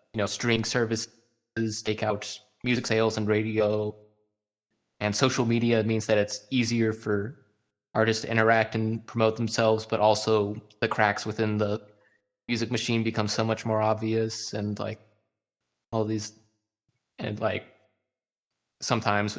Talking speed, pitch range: 135 wpm, 105-125 Hz